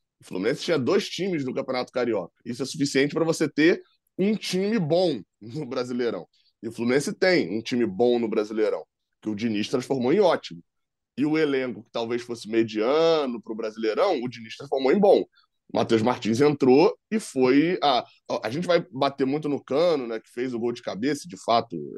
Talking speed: 195 wpm